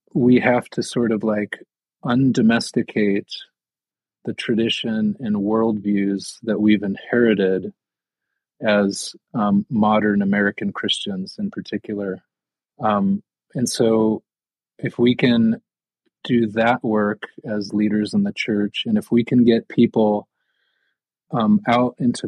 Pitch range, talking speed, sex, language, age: 105-120 Hz, 120 wpm, male, English, 30-49